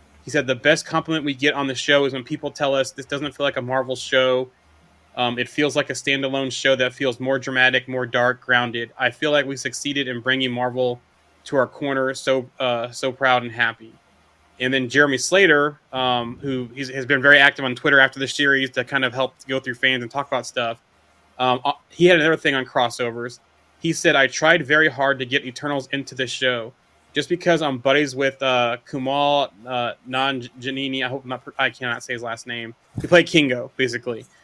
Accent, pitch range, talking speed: American, 125-145 Hz, 210 wpm